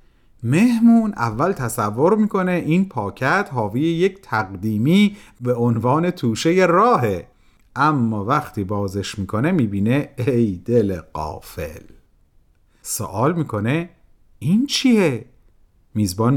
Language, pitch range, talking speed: Persian, 115-195 Hz, 95 wpm